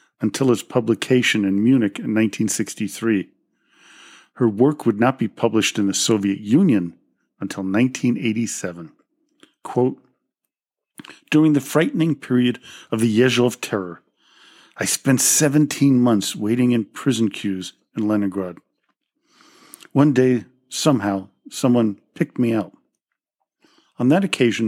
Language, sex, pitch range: English, male, 105-130 Hz